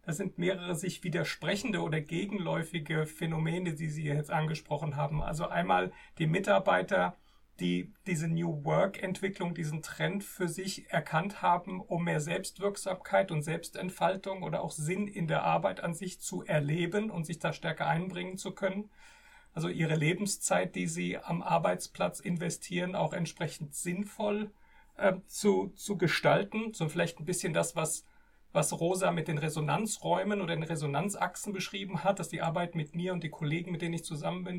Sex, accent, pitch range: male, German, 160-190 Hz